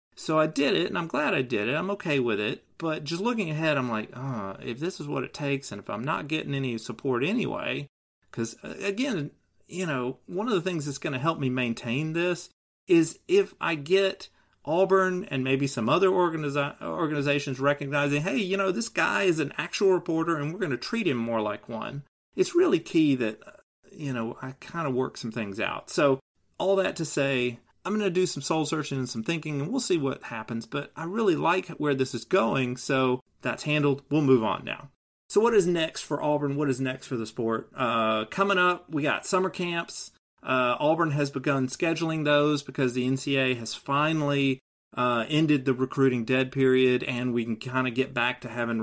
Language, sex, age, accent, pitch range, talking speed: English, male, 30-49, American, 125-170 Hz, 210 wpm